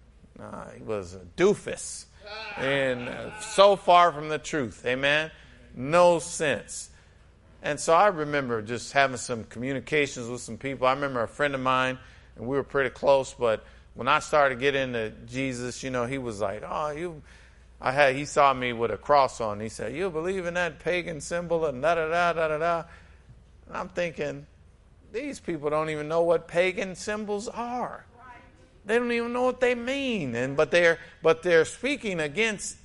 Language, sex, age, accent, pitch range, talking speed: English, male, 50-69, American, 120-170 Hz, 175 wpm